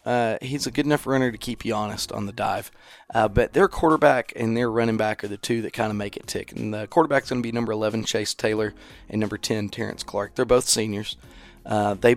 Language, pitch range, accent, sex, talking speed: English, 105-120 Hz, American, male, 240 wpm